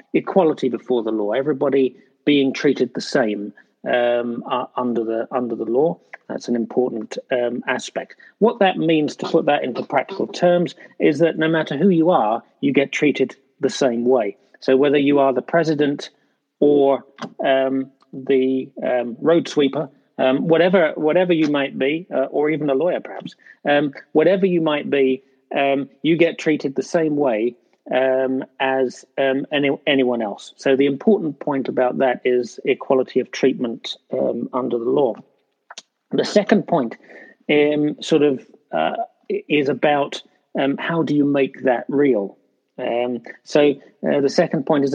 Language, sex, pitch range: English, male, 130-155 Hz